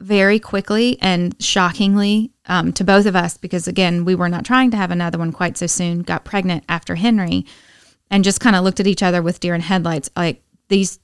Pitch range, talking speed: 175-205 Hz, 215 wpm